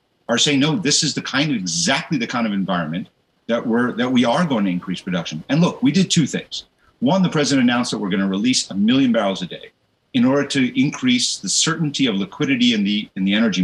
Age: 50-69